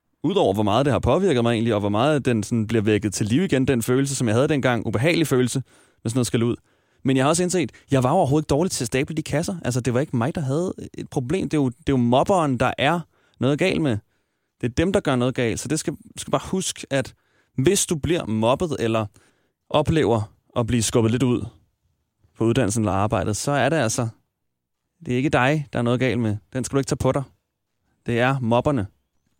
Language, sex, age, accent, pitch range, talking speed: Danish, male, 30-49, native, 110-145 Hz, 235 wpm